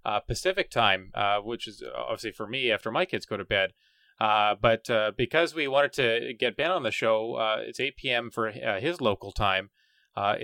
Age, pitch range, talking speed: 20-39, 105-140 Hz, 215 wpm